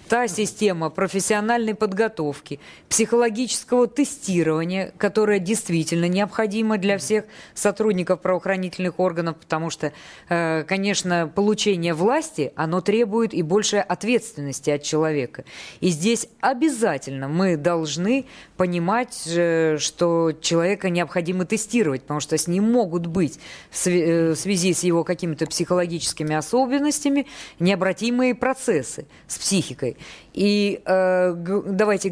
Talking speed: 105 wpm